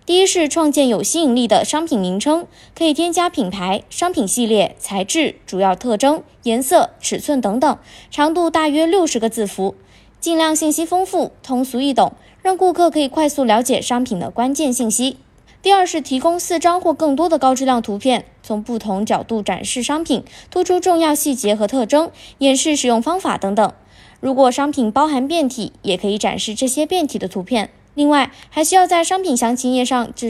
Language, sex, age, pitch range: Chinese, female, 20-39, 225-320 Hz